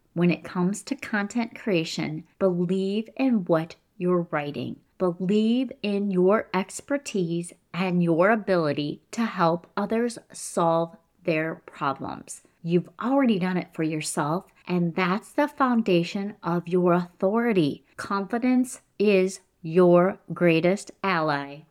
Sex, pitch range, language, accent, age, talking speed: female, 170-225 Hz, English, American, 30-49, 115 wpm